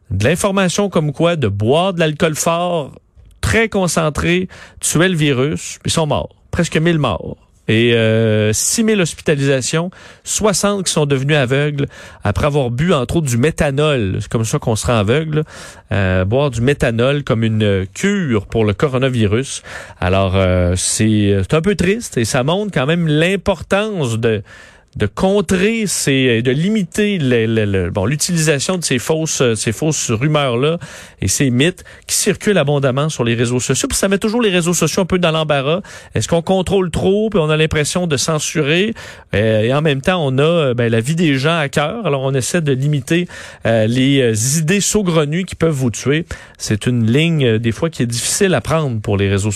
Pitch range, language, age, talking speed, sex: 115-170 Hz, French, 40-59, 185 wpm, male